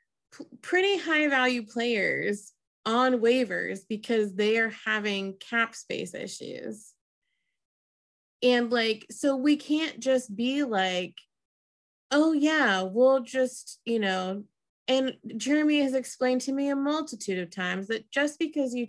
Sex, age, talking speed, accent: female, 20-39, 130 wpm, American